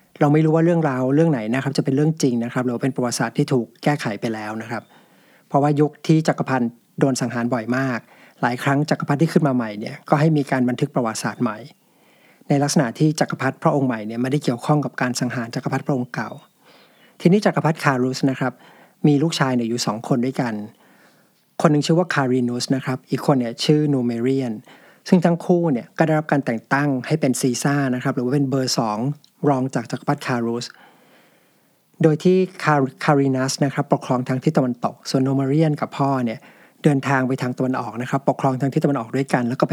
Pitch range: 125-150 Hz